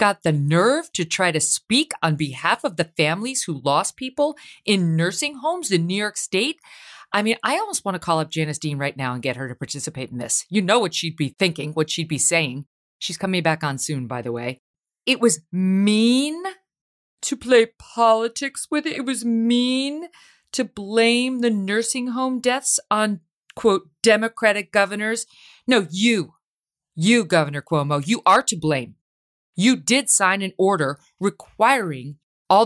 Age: 50-69